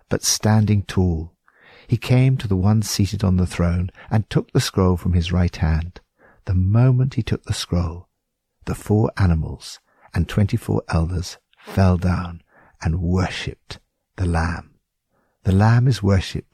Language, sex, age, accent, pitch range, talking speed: English, male, 60-79, British, 90-115 Hz, 150 wpm